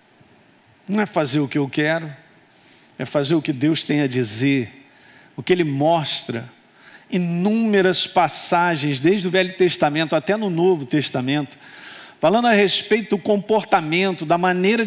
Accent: Brazilian